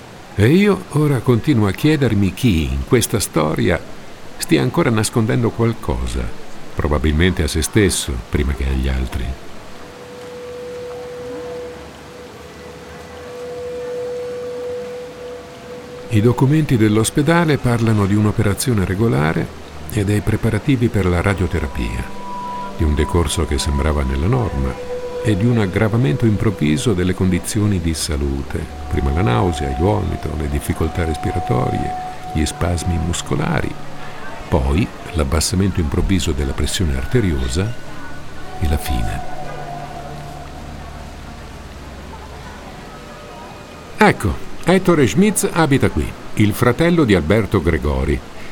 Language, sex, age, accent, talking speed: Italian, male, 50-69, native, 100 wpm